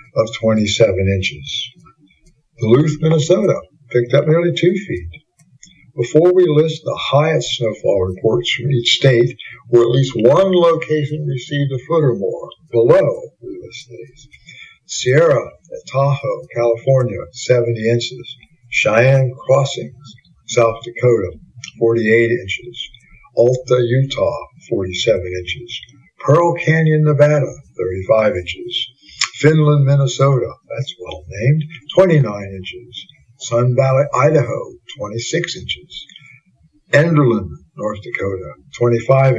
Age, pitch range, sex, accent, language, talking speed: 60-79, 115-150 Hz, male, American, English, 105 wpm